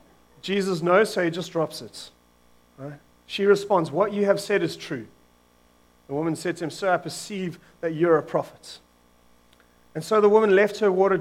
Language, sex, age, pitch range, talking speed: English, male, 30-49, 135-195 Hz, 180 wpm